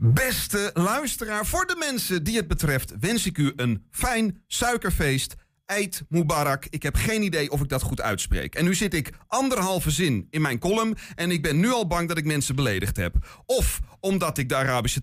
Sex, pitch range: male, 140-200 Hz